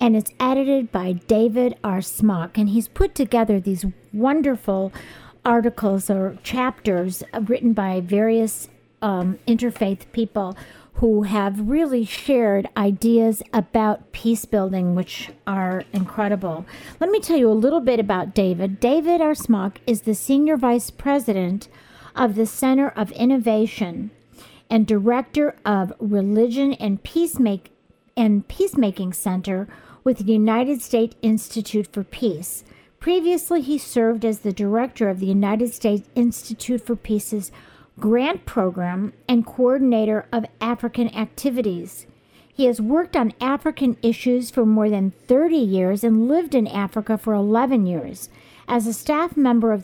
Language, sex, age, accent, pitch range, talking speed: English, female, 50-69, American, 205-255 Hz, 135 wpm